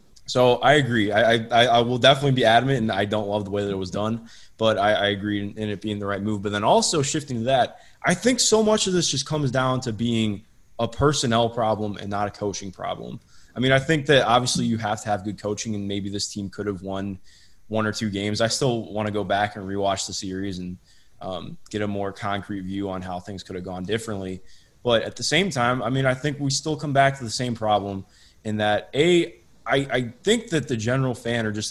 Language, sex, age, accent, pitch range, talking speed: English, male, 20-39, American, 100-130 Hz, 250 wpm